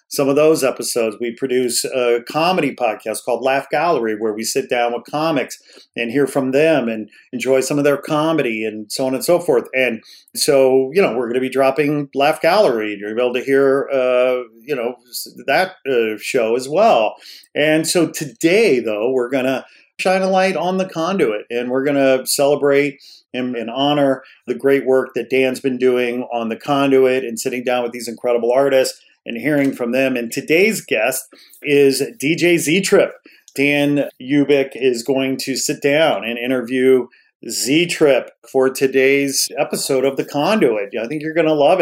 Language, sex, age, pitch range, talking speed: English, male, 40-59, 120-140 Hz, 185 wpm